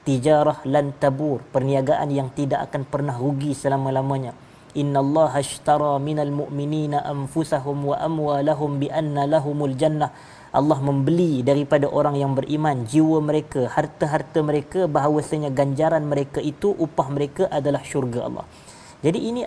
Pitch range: 140-155 Hz